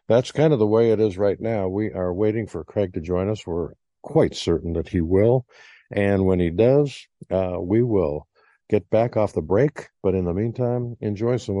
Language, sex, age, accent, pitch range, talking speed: English, male, 50-69, American, 90-115 Hz, 210 wpm